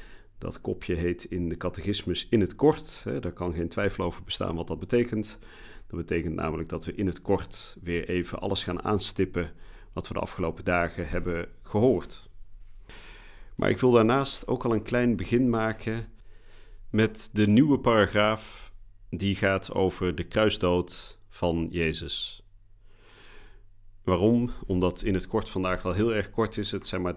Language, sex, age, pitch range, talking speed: Dutch, male, 40-59, 90-105 Hz, 160 wpm